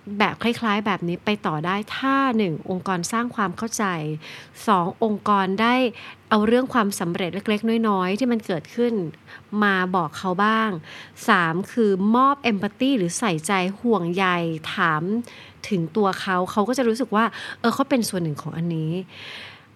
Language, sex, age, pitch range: Thai, female, 30-49, 185-240 Hz